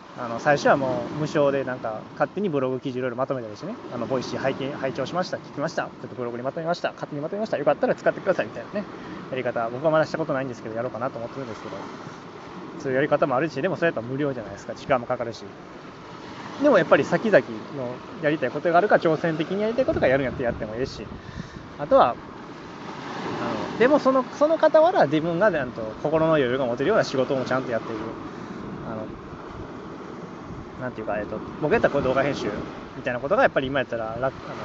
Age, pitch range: 20-39, 125-170 Hz